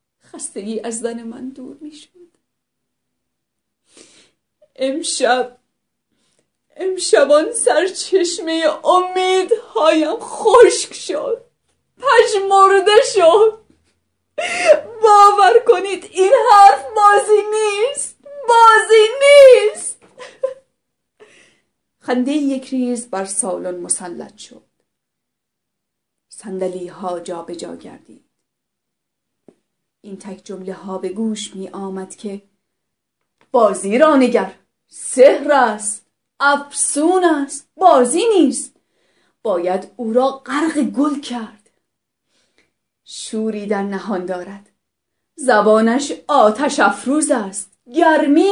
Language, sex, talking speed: Persian, female, 85 wpm